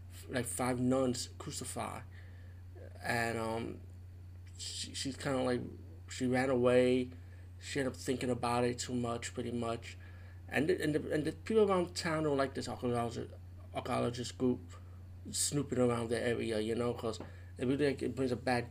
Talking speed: 170 wpm